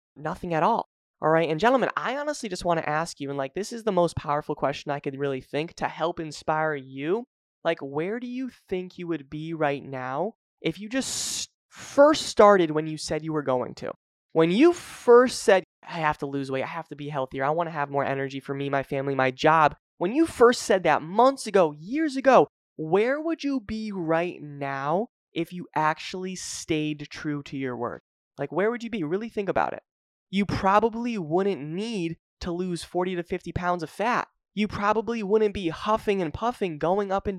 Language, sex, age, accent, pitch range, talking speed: English, male, 20-39, American, 155-220 Hz, 210 wpm